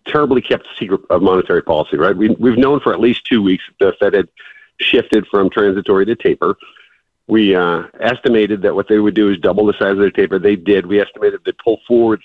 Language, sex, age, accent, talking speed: English, male, 50-69, American, 215 wpm